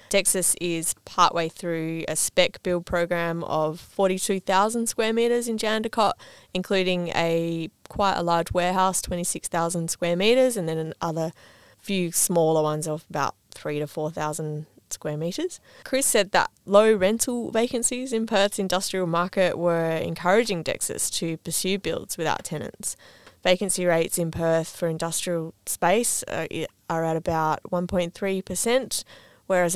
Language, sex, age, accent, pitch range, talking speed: English, female, 20-39, Australian, 165-200 Hz, 135 wpm